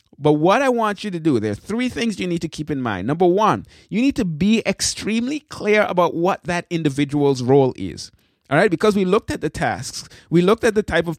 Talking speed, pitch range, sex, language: 240 wpm, 130-185 Hz, male, English